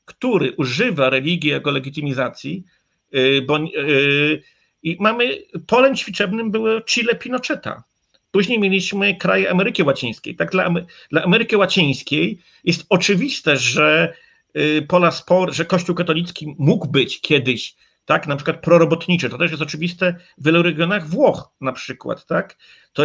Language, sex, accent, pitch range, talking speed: Polish, male, native, 150-200 Hz, 140 wpm